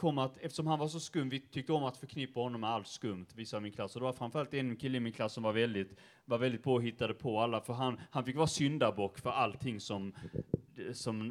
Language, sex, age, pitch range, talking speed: Swedish, male, 30-49, 110-130 Hz, 235 wpm